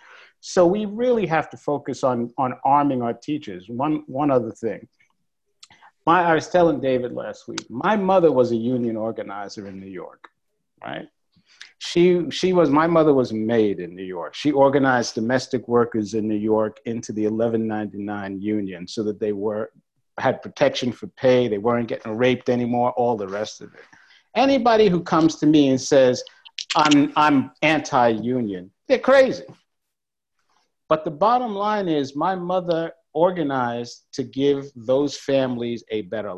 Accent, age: American, 50-69